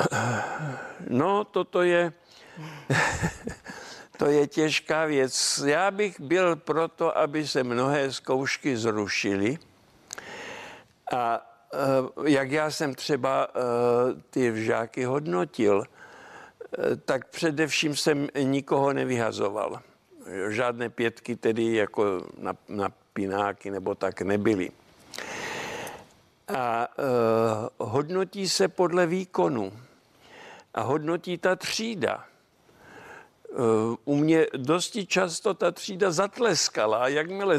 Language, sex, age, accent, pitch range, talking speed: Czech, male, 60-79, native, 125-175 Hz, 90 wpm